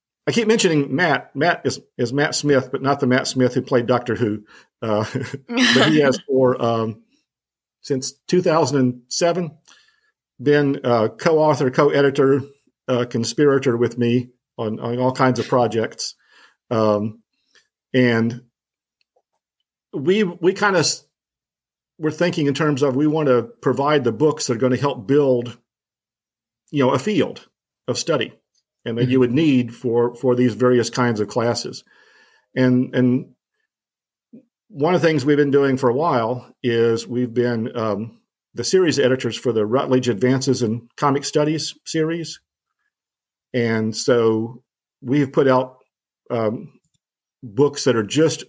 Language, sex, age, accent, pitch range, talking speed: English, male, 50-69, American, 120-145 Hz, 145 wpm